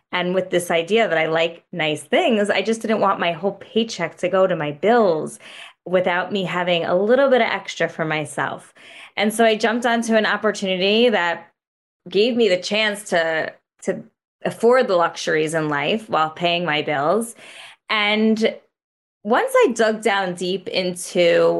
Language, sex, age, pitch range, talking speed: English, female, 20-39, 170-215 Hz, 170 wpm